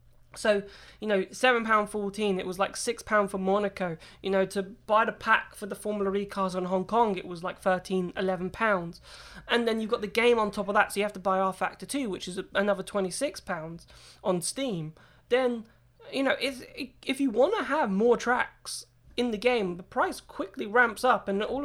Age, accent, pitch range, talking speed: 20-39, British, 190-235 Hz, 220 wpm